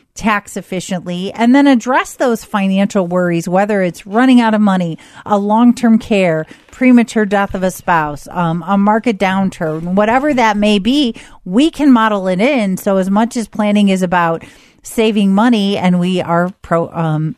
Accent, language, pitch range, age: American, English, 175-215 Hz, 40-59